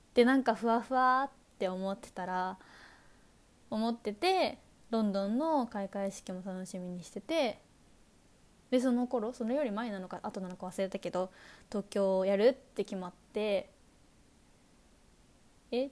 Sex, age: female, 20-39